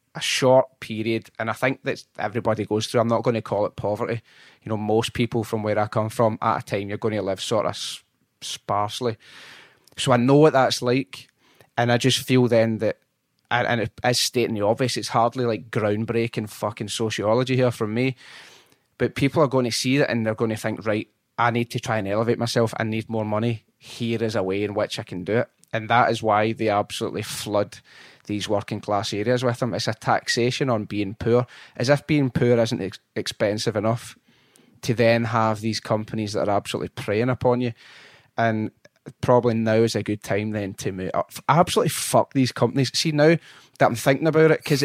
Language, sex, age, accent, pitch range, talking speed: English, male, 20-39, British, 110-130 Hz, 210 wpm